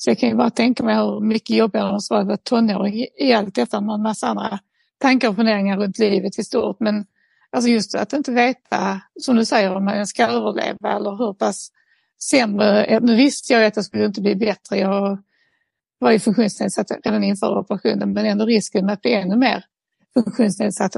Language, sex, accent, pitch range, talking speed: Swedish, female, native, 210-245 Hz, 205 wpm